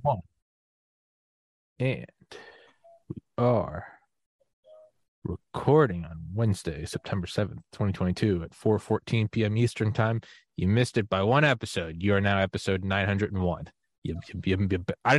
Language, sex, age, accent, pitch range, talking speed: English, male, 20-39, American, 95-120 Hz, 125 wpm